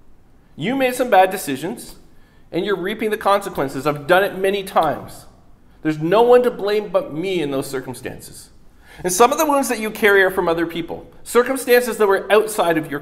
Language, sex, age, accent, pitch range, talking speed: English, male, 40-59, American, 170-225 Hz, 200 wpm